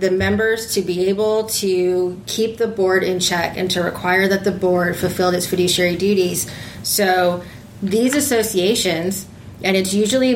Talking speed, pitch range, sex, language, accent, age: 155 wpm, 180-215 Hz, female, English, American, 30-49